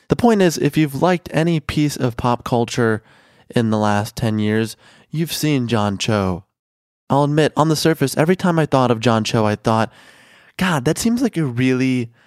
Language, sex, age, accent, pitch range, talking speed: English, male, 20-39, American, 110-145 Hz, 195 wpm